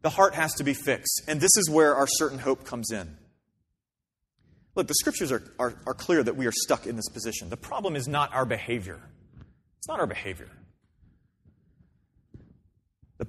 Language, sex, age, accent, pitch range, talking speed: English, male, 30-49, American, 135-185 Hz, 180 wpm